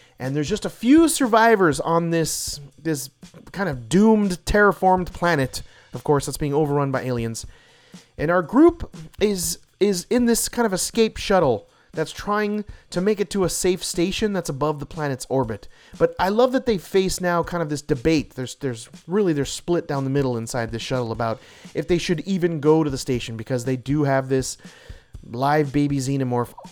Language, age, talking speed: English, 30-49, 190 wpm